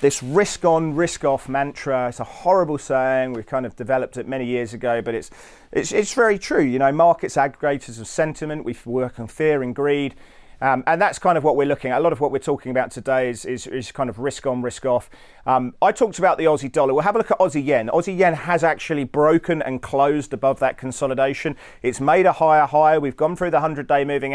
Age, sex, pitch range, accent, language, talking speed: 40-59, male, 125-150 Hz, British, English, 235 wpm